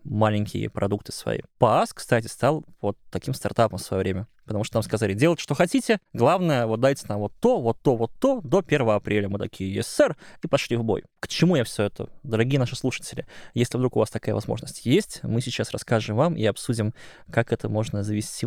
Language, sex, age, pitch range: Russian, male, 20-39, 110-145 Hz